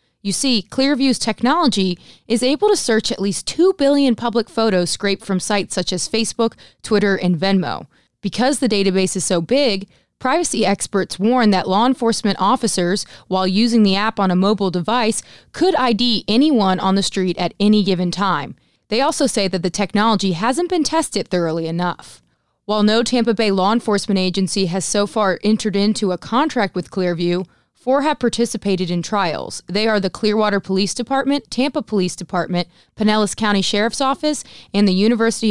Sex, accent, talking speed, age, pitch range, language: female, American, 170 wpm, 20-39, 190-245 Hz, English